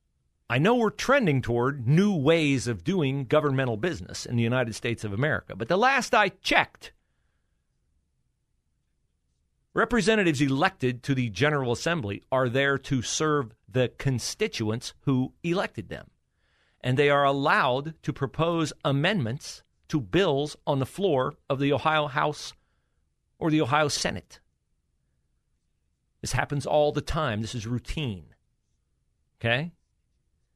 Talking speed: 130 wpm